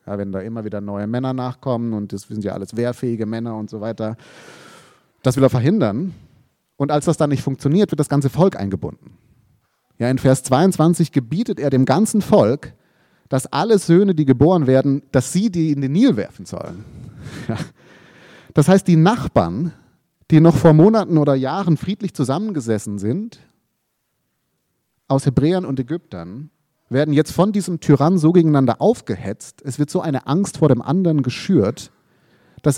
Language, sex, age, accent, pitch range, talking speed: German, male, 30-49, German, 130-170 Hz, 165 wpm